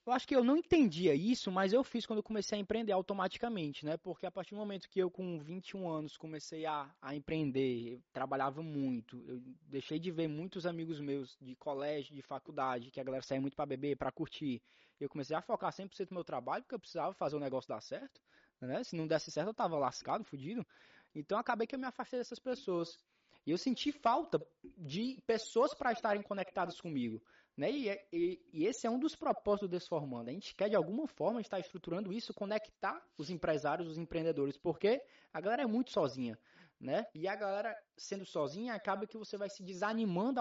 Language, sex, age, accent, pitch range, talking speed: Portuguese, male, 20-39, Brazilian, 155-210 Hz, 210 wpm